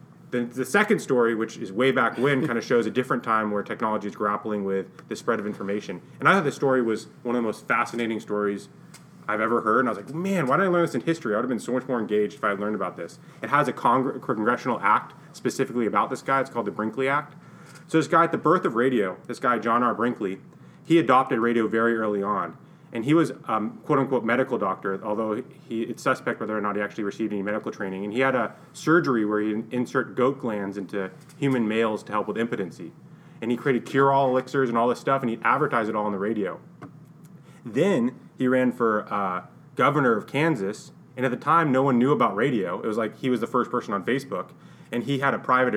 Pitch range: 105-135 Hz